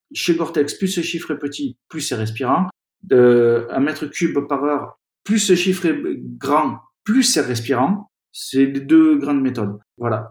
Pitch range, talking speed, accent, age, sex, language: 120-155 Hz, 170 wpm, French, 50-69, male, French